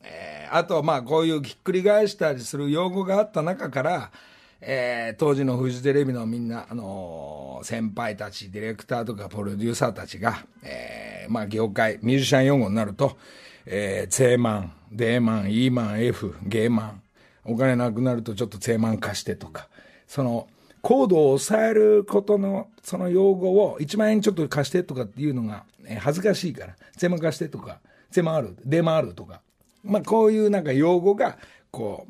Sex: male